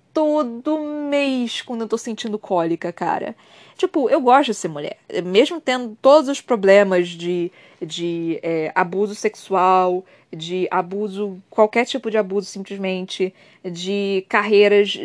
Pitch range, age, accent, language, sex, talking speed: 185-230 Hz, 20-39, Brazilian, Portuguese, female, 130 wpm